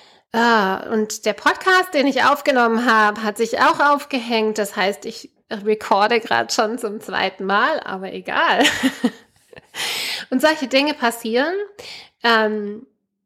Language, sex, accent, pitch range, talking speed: German, female, German, 205-255 Hz, 125 wpm